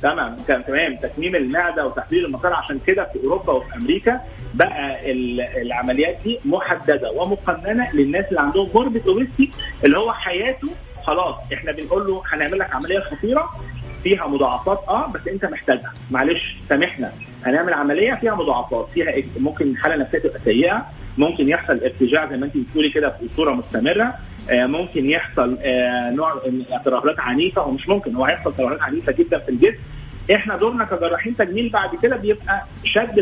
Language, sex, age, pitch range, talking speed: Arabic, male, 30-49, 140-225 Hz, 150 wpm